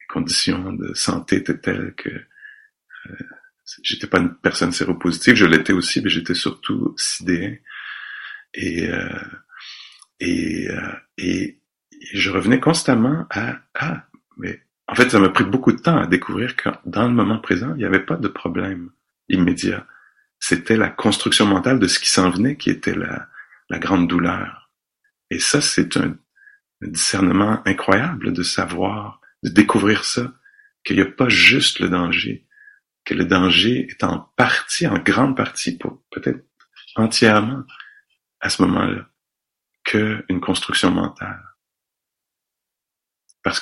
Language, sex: English, male